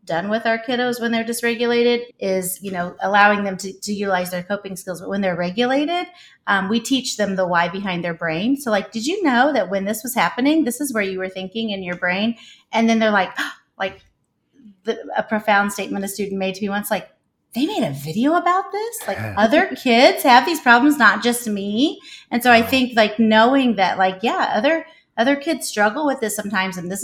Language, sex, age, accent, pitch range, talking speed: English, female, 30-49, American, 185-240 Hz, 215 wpm